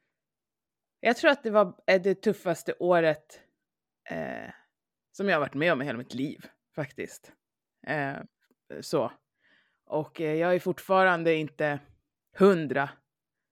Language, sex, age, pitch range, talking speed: Swedish, female, 20-39, 165-220 Hz, 130 wpm